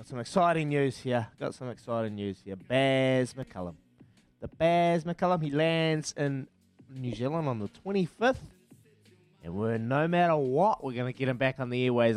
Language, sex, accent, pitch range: English, male, Australian, 120-155 Hz